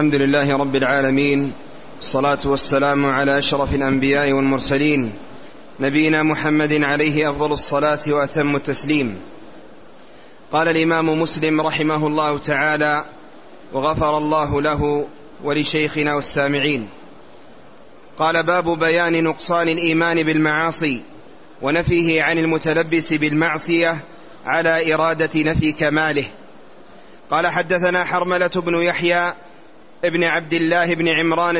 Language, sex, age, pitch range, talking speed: Arabic, male, 30-49, 150-180 Hz, 100 wpm